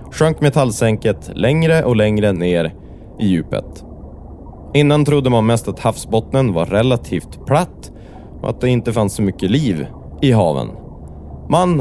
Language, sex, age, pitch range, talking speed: English, male, 20-39, 100-140 Hz, 140 wpm